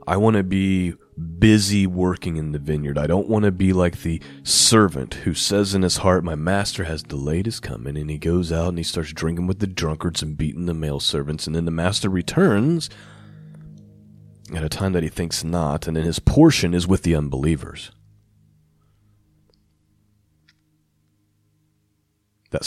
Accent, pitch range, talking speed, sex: American, 80-105 Hz, 170 wpm, male